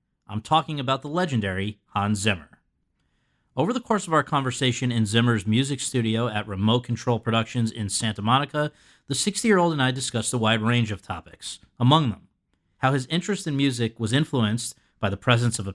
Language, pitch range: English, 110-150 Hz